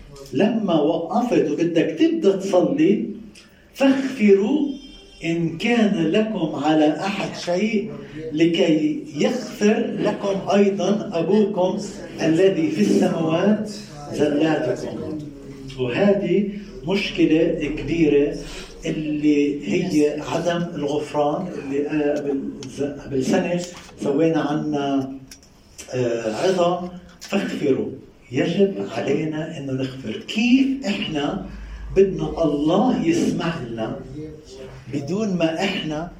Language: Arabic